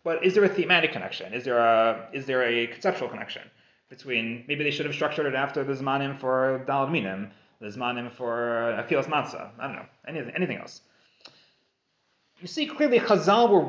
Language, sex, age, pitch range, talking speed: English, male, 30-49, 150-205 Hz, 190 wpm